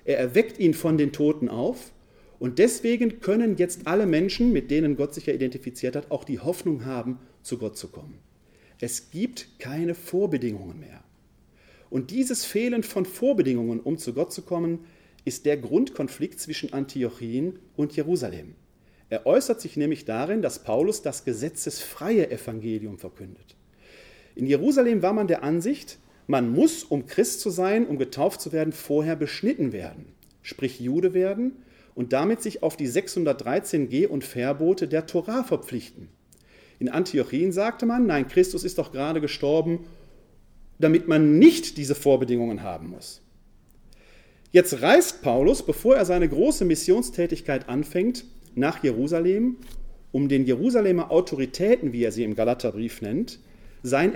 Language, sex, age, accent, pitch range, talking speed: German, male, 40-59, German, 130-195 Hz, 150 wpm